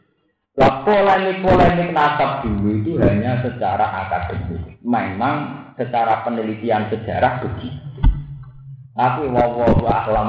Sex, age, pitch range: male, 40-59, 115-180 Hz